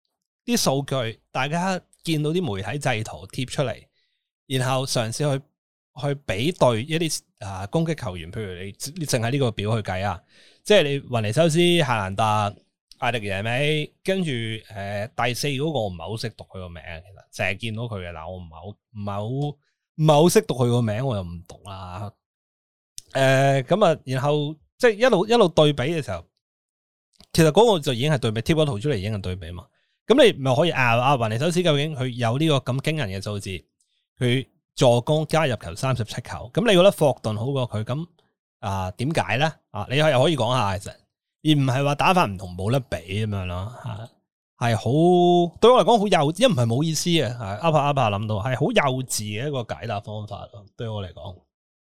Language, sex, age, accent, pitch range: Chinese, male, 20-39, native, 105-150 Hz